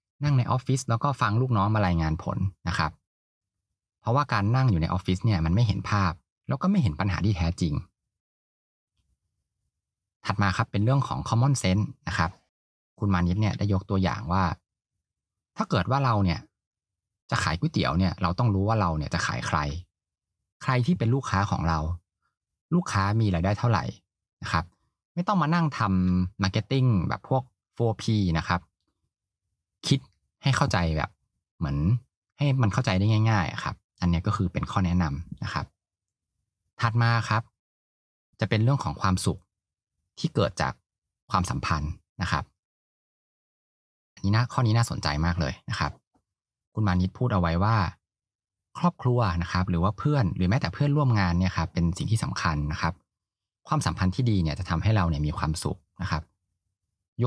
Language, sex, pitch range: Thai, male, 90-115 Hz